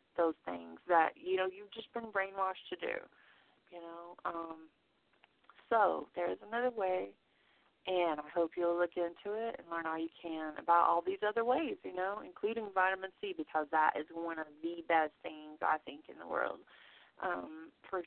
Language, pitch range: English, 160-195 Hz